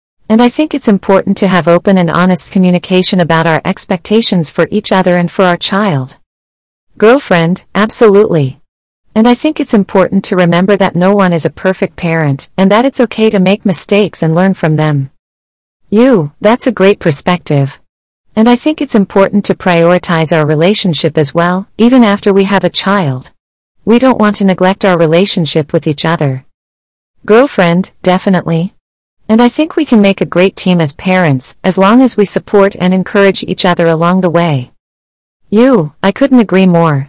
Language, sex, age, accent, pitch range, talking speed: English, female, 40-59, American, 160-205 Hz, 180 wpm